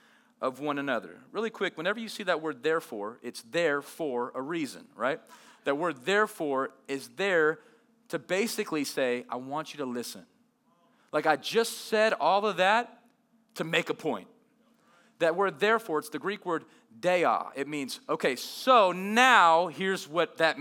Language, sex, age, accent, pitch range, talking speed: English, male, 40-59, American, 155-230 Hz, 165 wpm